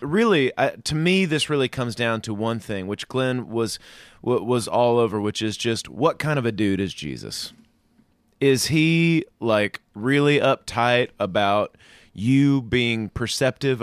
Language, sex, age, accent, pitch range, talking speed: English, male, 30-49, American, 110-145 Hz, 160 wpm